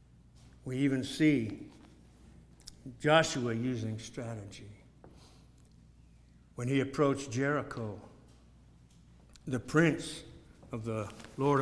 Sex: male